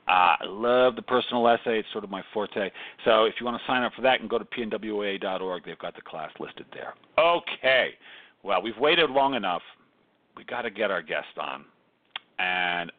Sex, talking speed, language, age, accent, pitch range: male, 210 wpm, English, 50-69, American, 120-185 Hz